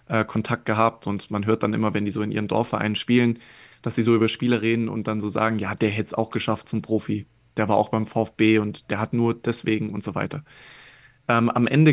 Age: 20-39